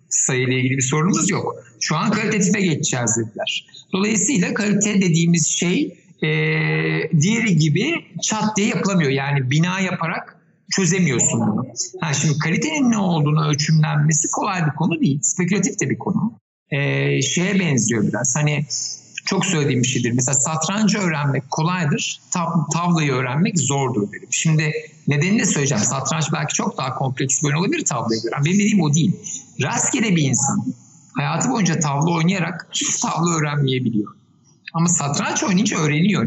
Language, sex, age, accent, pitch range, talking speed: Turkish, male, 60-79, native, 145-190 Hz, 145 wpm